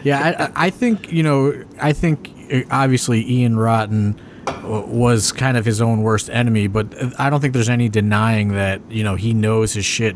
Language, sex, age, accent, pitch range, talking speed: English, male, 30-49, American, 105-120 Hz, 190 wpm